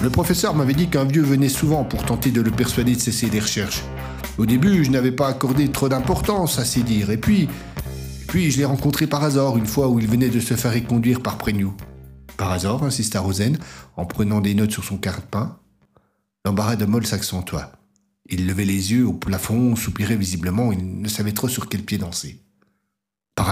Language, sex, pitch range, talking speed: French, male, 95-125 Hz, 210 wpm